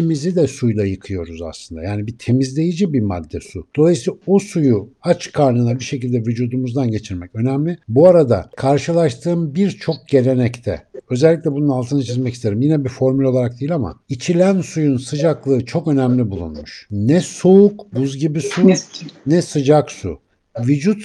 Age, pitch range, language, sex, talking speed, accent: 60-79, 120-160 Hz, Turkish, male, 150 wpm, native